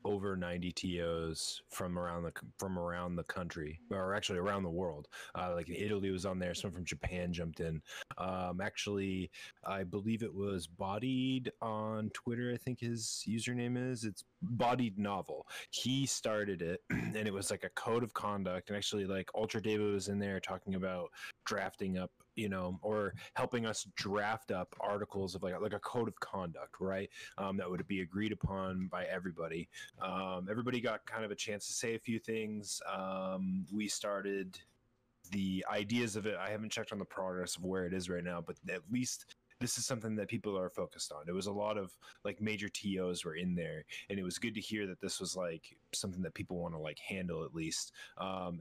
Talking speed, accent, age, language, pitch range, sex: 200 wpm, American, 20-39, English, 90-110 Hz, male